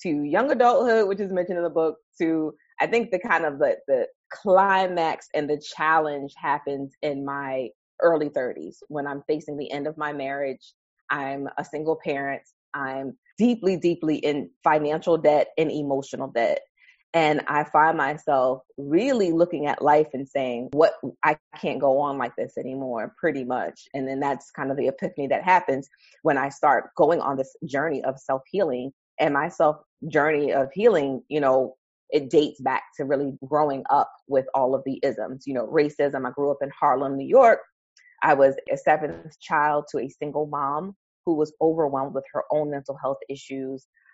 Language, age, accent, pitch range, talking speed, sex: English, 20-39, American, 135-160 Hz, 180 wpm, female